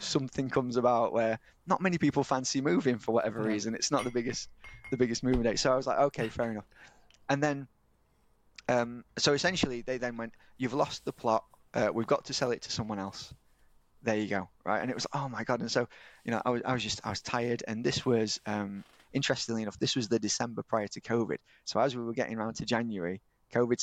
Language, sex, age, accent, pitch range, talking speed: English, male, 20-39, British, 110-130 Hz, 230 wpm